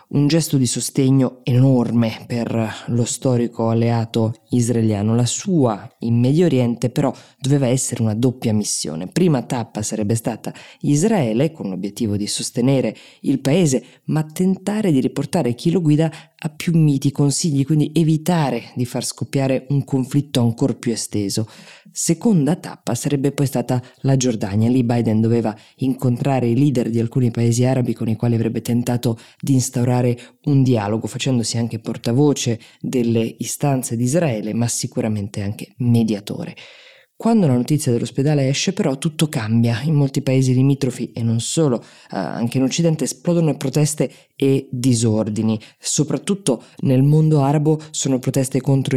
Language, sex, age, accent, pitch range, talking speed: Italian, female, 20-39, native, 120-145 Hz, 145 wpm